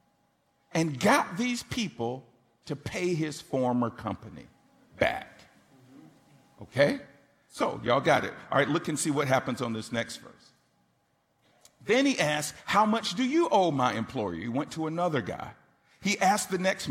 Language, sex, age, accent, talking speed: English, male, 50-69, American, 160 wpm